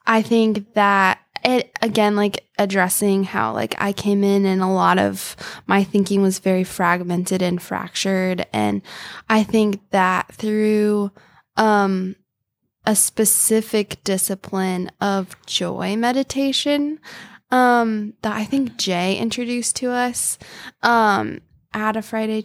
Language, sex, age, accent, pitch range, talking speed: English, female, 10-29, American, 190-225 Hz, 125 wpm